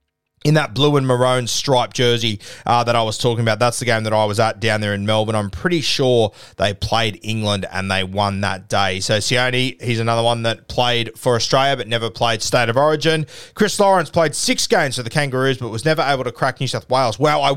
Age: 20-39